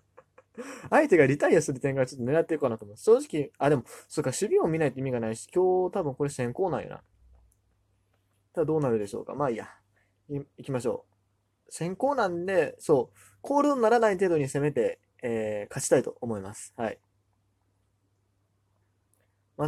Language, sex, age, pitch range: Japanese, male, 20-39, 100-145 Hz